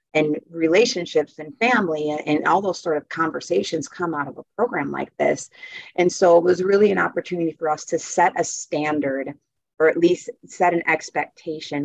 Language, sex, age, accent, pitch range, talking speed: English, female, 30-49, American, 150-185 Hz, 185 wpm